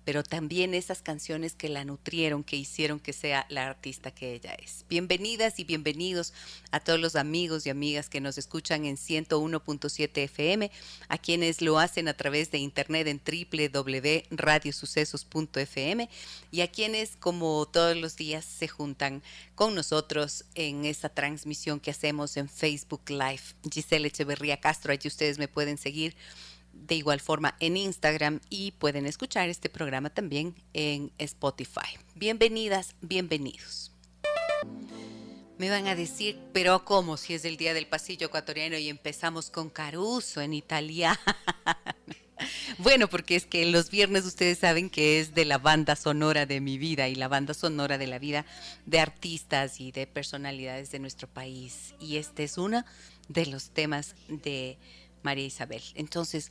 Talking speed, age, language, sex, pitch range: 155 wpm, 40-59, Spanish, female, 145-170 Hz